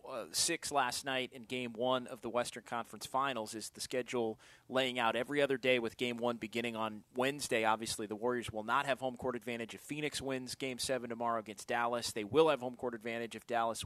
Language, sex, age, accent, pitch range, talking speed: English, male, 30-49, American, 120-145 Hz, 220 wpm